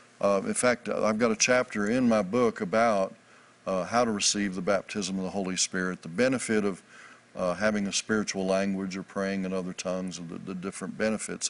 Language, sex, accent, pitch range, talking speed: English, male, American, 100-115 Hz, 200 wpm